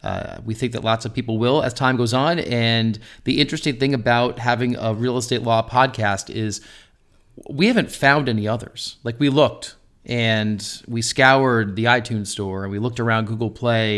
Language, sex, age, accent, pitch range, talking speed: English, male, 30-49, American, 110-130 Hz, 190 wpm